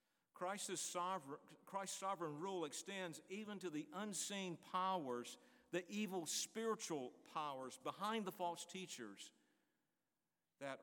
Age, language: 50-69, English